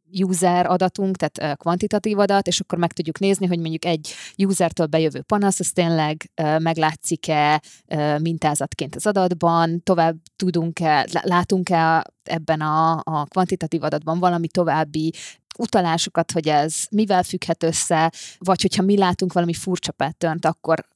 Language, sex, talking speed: Hungarian, female, 130 wpm